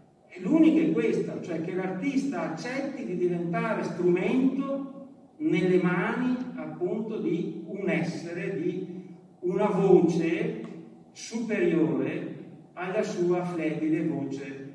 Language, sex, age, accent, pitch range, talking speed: Italian, male, 50-69, native, 155-195 Hz, 100 wpm